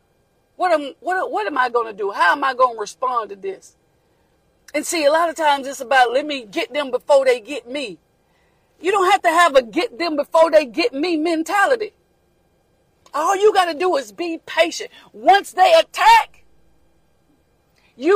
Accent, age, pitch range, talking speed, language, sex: American, 40-59, 295-380 Hz, 190 wpm, English, female